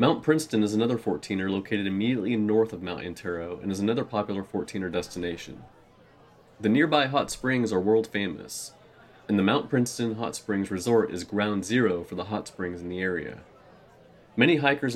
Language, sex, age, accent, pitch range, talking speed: English, male, 30-49, American, 95-115 Hz, 175 wpm